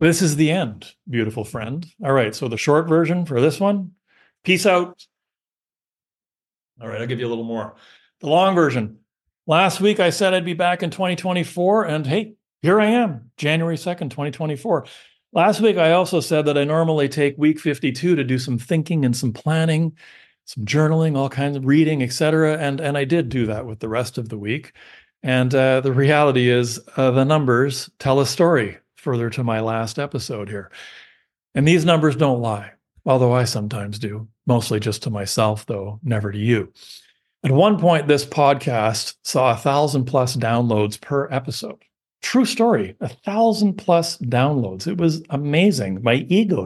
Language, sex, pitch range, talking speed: English, male, 115-165 Hz, 180 wpm